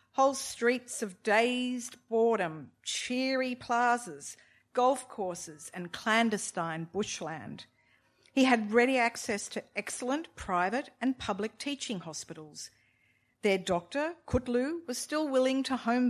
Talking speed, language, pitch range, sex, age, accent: 115 wpm, English, 170-245 Hz, female, 50-69, Australian